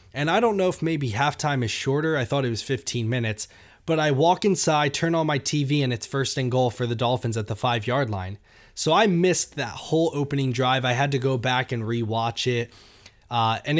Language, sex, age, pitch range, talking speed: English, male, 20-39, 115-145 Hz, 230 wpm